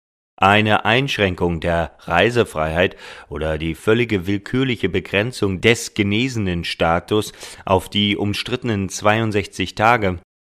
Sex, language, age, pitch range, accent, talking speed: male, German, 40-59, 90-115 Hz, German, 100 wpm